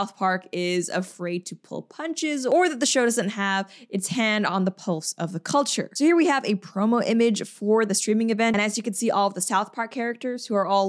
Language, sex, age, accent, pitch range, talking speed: English, female, 20-39, American, 185-240 Hz, 250 wpm